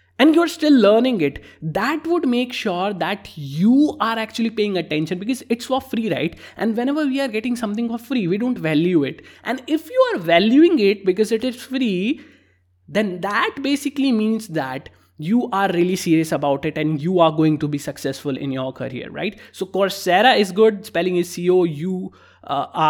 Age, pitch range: 20-39, 150-210 Hz